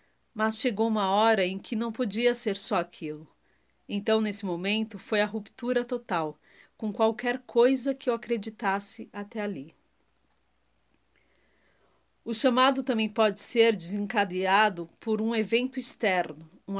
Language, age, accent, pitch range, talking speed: Portuguese, 40-59, Brazilian, 185-230 Hz, 130 wpm